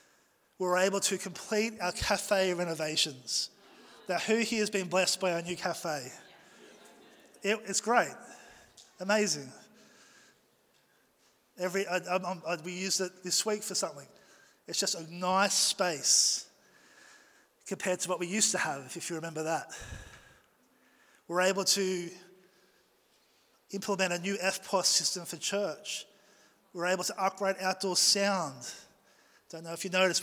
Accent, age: Australian, 20-39